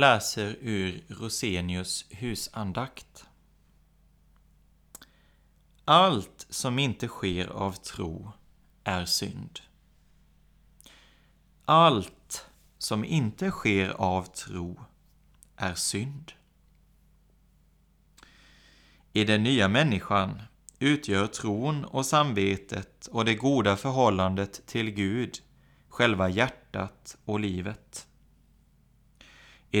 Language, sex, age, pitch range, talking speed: Swedish, male, 30-49, 95-125 Hz, 80 wpm